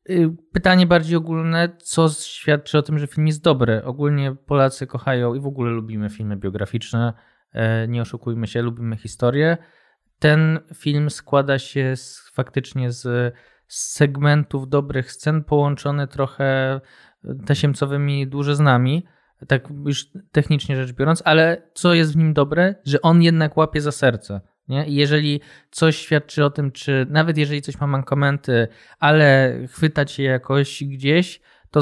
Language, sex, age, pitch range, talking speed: Polish, male, 20-39, 130-155 Hz, 145 wpm